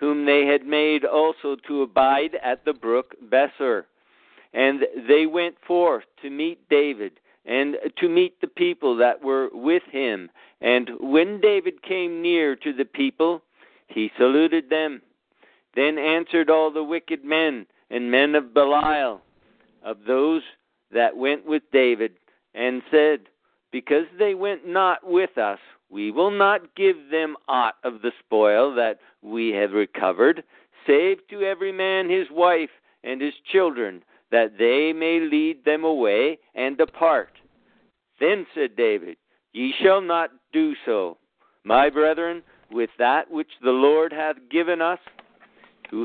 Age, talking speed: 50-69, 145 wpm